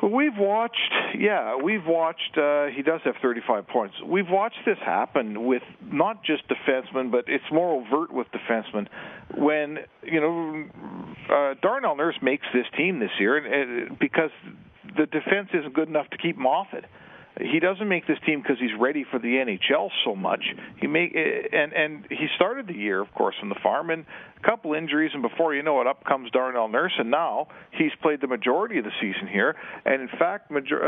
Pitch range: 130-170 Hz